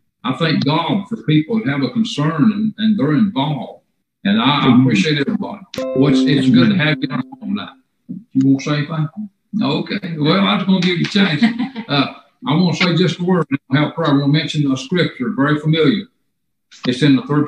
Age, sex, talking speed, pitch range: 60-79, male, 210 wpm, 145-220 Hz